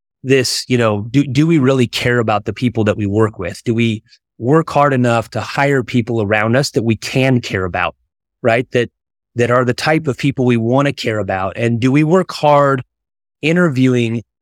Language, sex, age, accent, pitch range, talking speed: English, male, 30-49, American, 110-130 Hz, 205 wpm